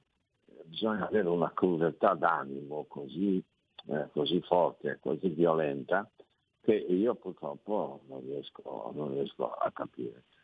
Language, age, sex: Italian, 60-79, male